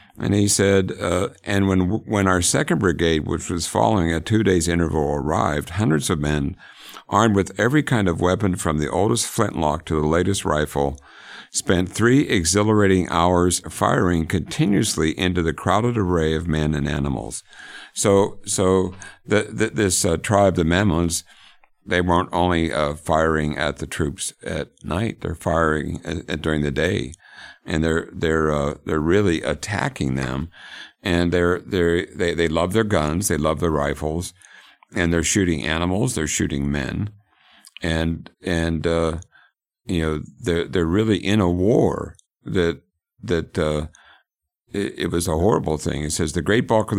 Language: English